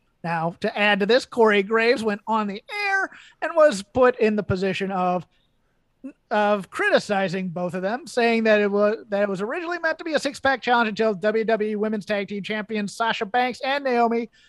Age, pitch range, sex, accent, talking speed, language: 30-49, 190-230 Hz, male, American, 200 wpm, English